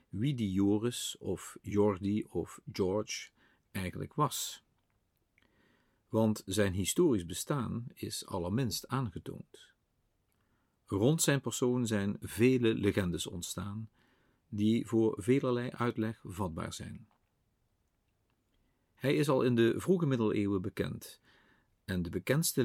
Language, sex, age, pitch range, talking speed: Dutch, male, 50-69, 100-125 Hz, 105 wpm